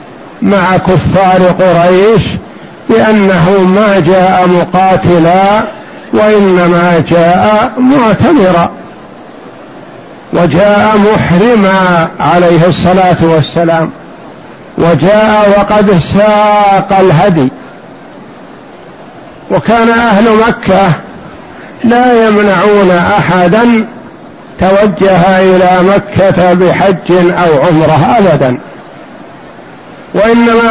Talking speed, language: 65 wpm, Arabic